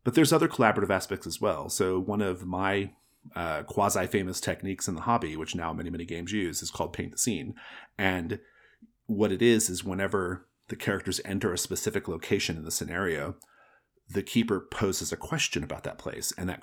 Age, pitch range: 30-49, 90-110 Hz